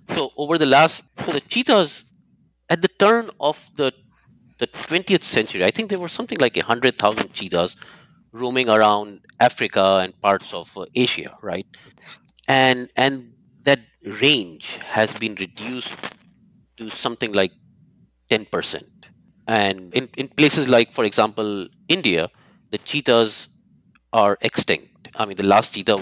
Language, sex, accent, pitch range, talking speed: English, male, Indian, 105-150 Hz, 145 wpm